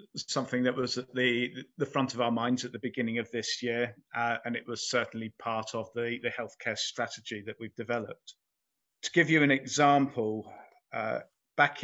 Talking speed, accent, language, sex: 190 wpm, British, English, male